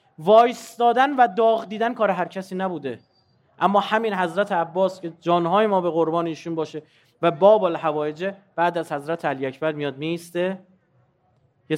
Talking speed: 150 wpm